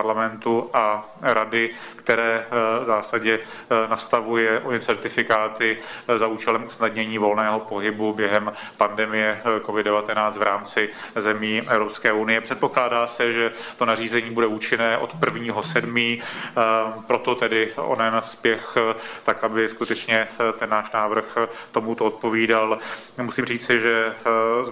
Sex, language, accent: male, Czech, native